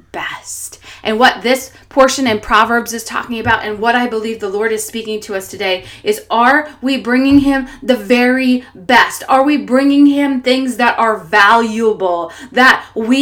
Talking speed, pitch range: 175 wpm, 190-235 Hz